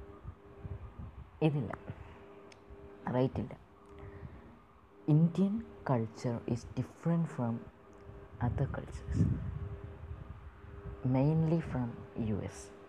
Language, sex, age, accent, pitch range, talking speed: Malayalam, female, 20-39, native, 100-135 Hz, 60 wpm